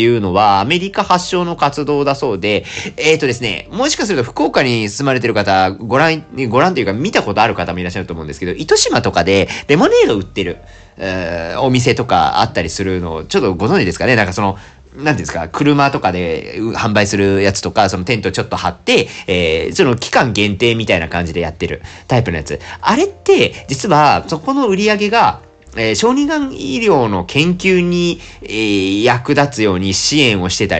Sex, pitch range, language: male, 95-155 Hz, Japanese